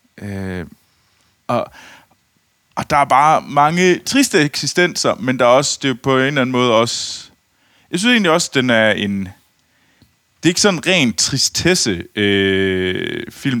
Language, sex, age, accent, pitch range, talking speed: Danish, male, 20-39, native, 110-150 Hz, 155 wpm